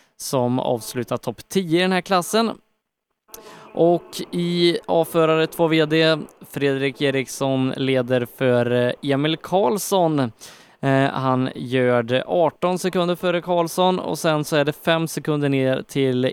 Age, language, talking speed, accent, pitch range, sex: 20-39, Swedish, 125 wpm, native, 130-170 Hz, male